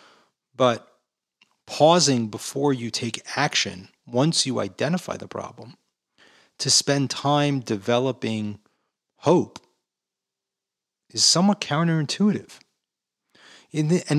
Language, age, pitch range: English, 30-49, 110-150 Hz